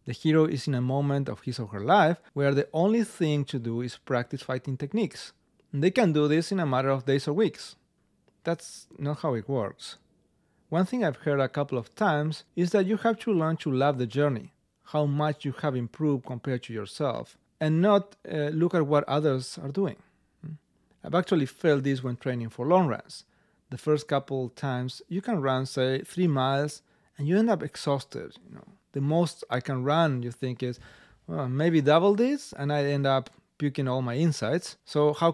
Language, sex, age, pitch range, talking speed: English, male, 40-59, 135-165 Hz, 200 wpm